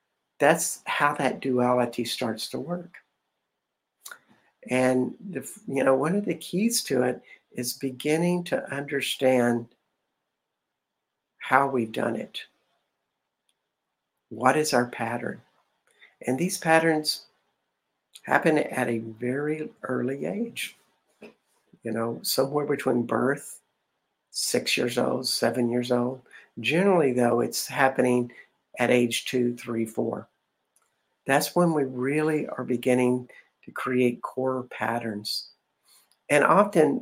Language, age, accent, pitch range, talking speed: English, 60-79, American, 120-150 Hz, 115 wpm